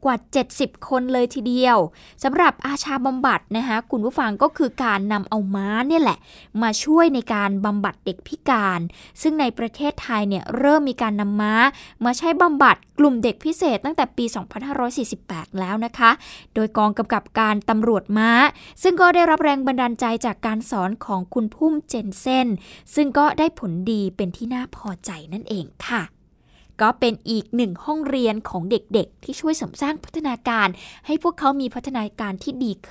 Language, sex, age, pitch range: Thai, female, 20-39, 220-285 Hz